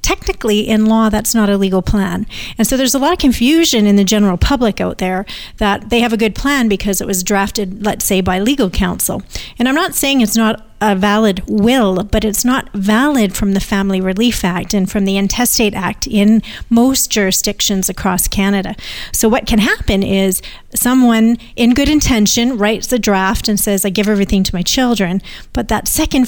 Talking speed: 200 wpm